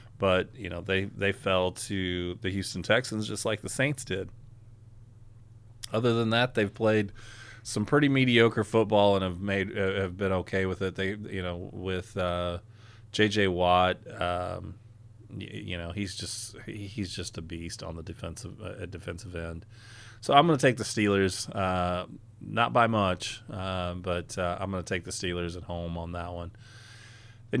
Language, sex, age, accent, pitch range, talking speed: English, male, 30-49, American, 90-115 Hz, 180 wpm